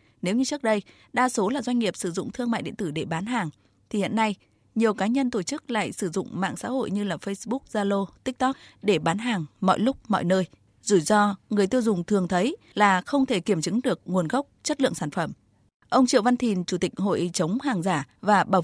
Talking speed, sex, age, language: 240 wpm, female, 20-39, Vietnamese